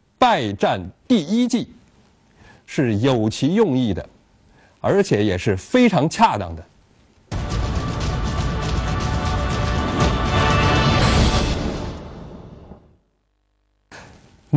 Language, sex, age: Chinese, male, 50-69